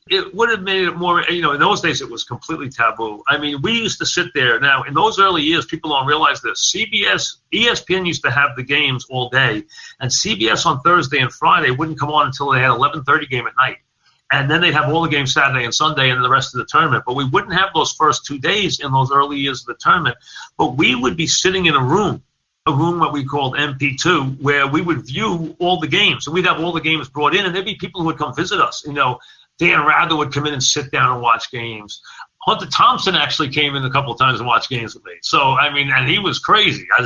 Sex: male